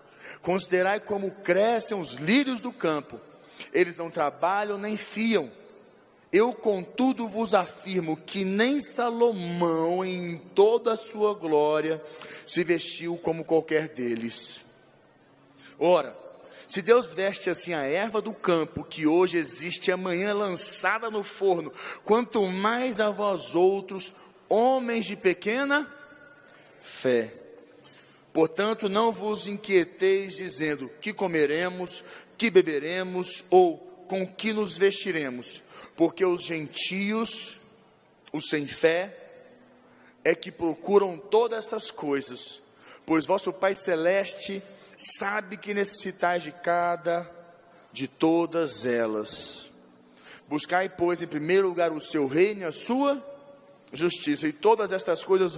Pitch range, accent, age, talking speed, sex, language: 165-215 Hz, Brazilian, 40-59, 115 wpm, male, Portuguese